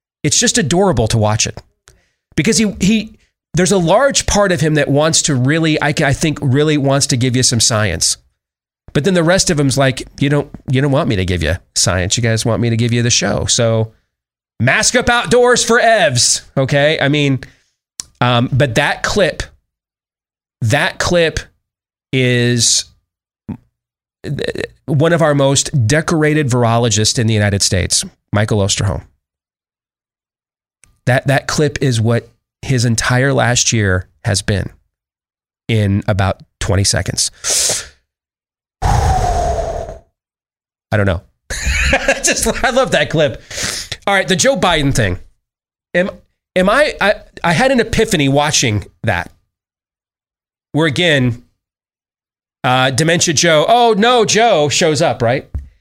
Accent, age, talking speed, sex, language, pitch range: American, 30-49, 145 wpm, male, English, 105-165 Hz